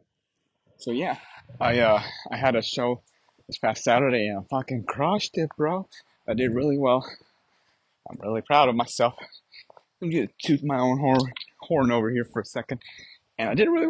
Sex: male